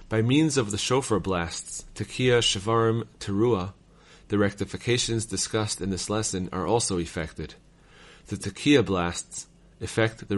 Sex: male